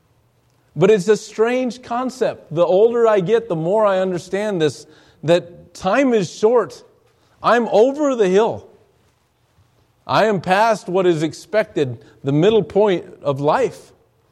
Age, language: 40-59, English